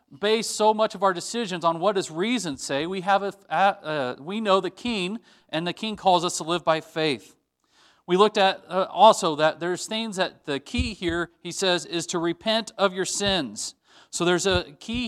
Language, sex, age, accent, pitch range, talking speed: English, male, 40-59, American, 155-200 Hz, 205 wpm